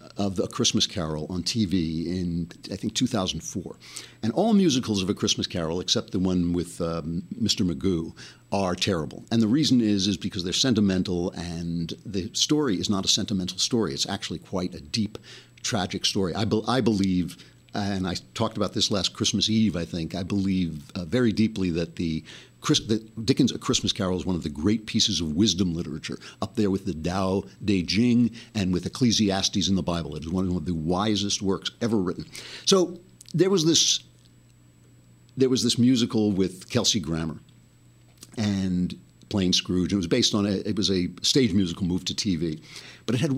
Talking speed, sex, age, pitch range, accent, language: 185 wpm, male, 60-79, 90-115 Hz, American, English